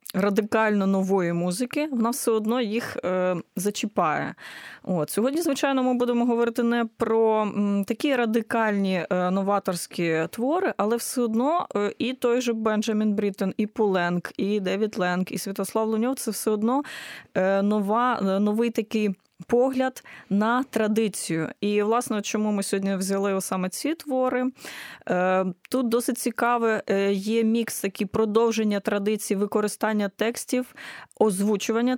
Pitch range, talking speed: 205-240 Hz, 125 wpm